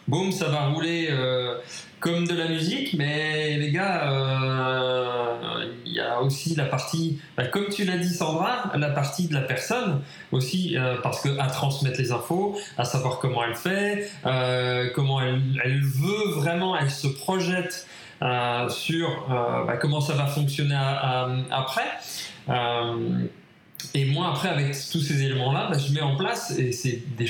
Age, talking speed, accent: 20-39, 175 wpm, French